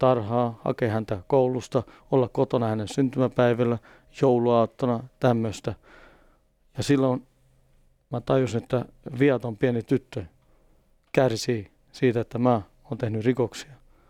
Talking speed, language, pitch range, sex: 105 wpm, Finnish, 115-130 Hz, male